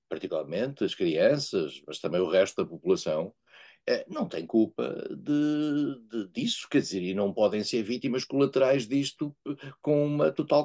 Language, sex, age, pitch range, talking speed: Portuguese, male, 50-69, 110-160 Hz, 150 wpm